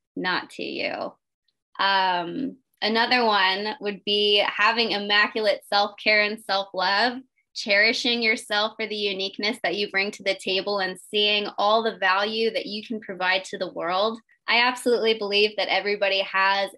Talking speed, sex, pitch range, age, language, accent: 150 wpm, female, 190-215 Hz, 20-39, English, American